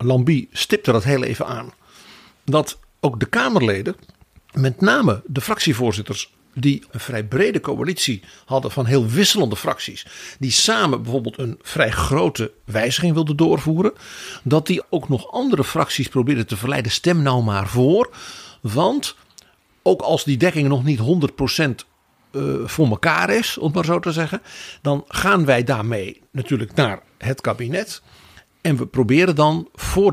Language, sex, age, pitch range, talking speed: Dutch, male, 50-69, 120-155 Hz, 150 wpm